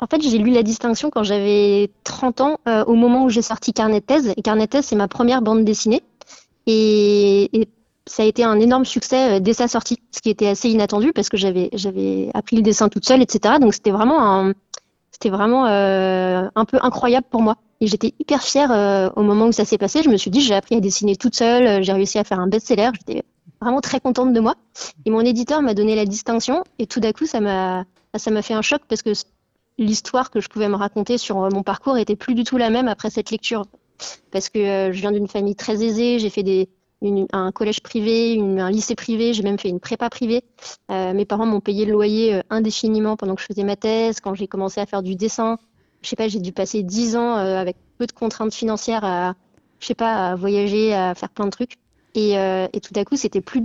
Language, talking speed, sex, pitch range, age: French, 235 wpm, female, 200-235 Hz, 30-49